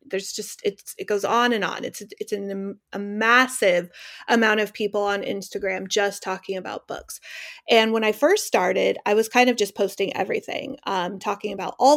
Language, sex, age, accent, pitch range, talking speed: English, female, 30-49, American, 195-240 Hz, 190 wpm